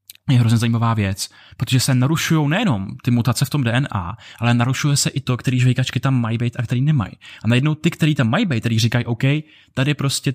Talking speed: 220 wpm